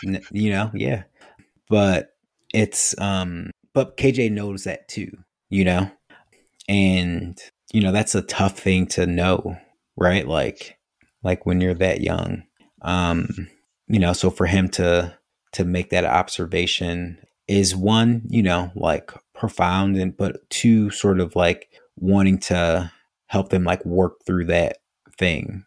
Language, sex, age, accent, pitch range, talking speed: English, male, 30-49, American, 90-100 Hz, 145 wpm